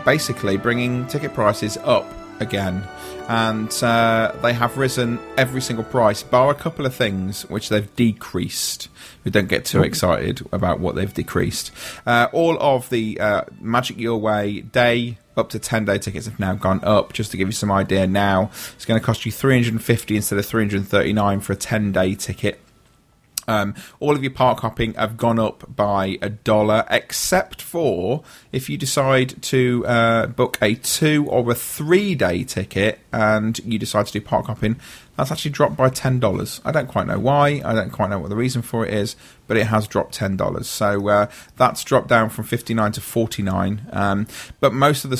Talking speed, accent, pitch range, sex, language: 190 wpm, British, 100-125 Hz, male, English